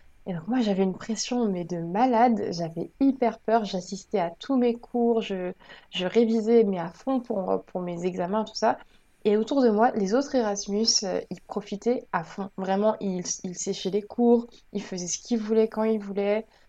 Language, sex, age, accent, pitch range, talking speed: French, female, 20-39, French, 185-225 Hz, 200 wpm